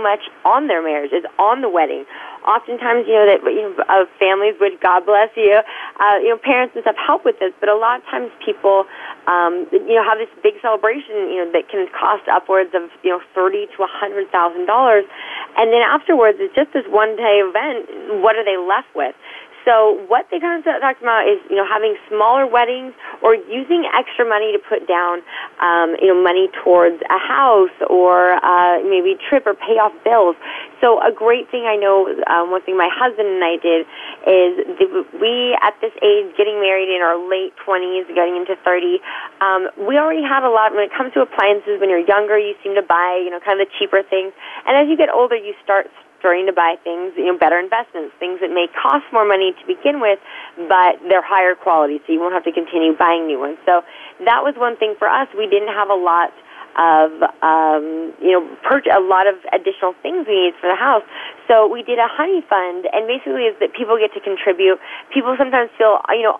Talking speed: 220 wpm